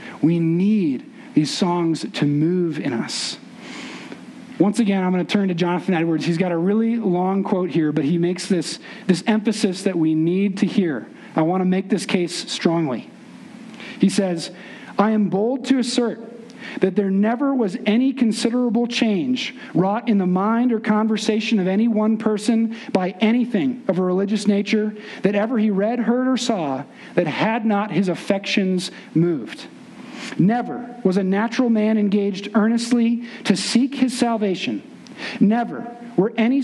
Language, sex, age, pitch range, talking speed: English, male, 40-59, 195-240 Hz, 160 wpm